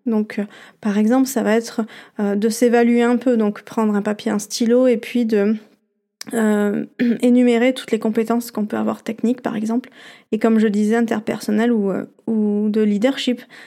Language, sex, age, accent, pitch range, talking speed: French, female, 20-39, French, 220-255 Hz, 185 wpm